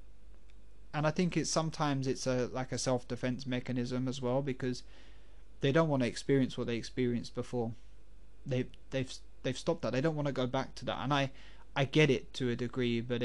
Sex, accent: male, British